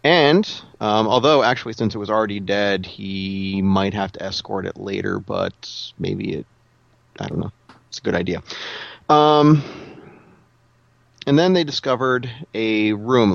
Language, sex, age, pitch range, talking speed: English, male, 30-49, 100-125 Hz, 155 wpm